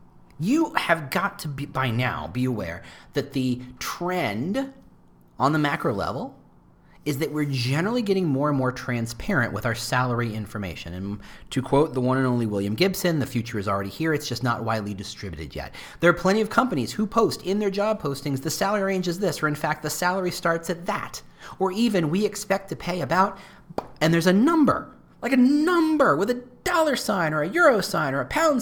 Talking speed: 205 wpm